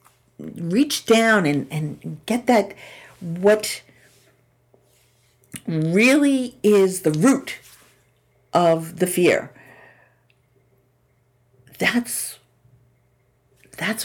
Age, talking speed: 50-69, 70 wpm